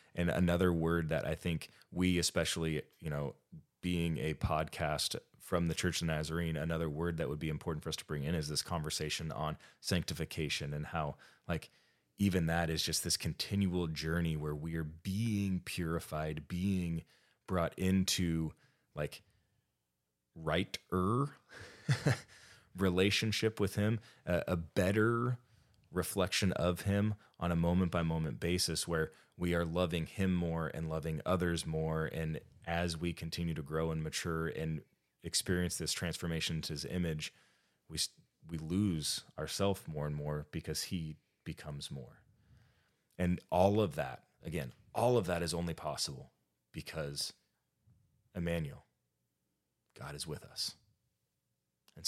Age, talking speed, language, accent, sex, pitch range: 20-39, 140 wpm, English, American, male, 80-90 Hz